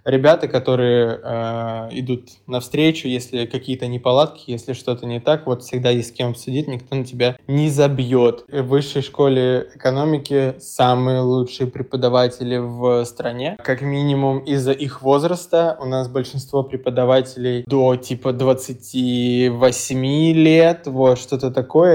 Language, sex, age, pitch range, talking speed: Russian, male, 20-39, 125-140 Hz, 130 wpm